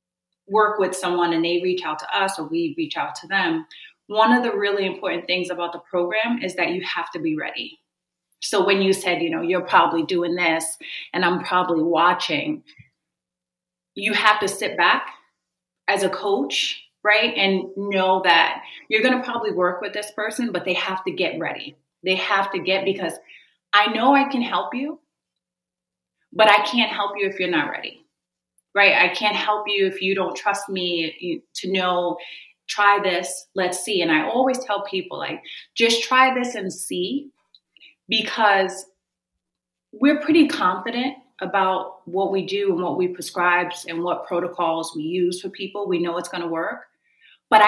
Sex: female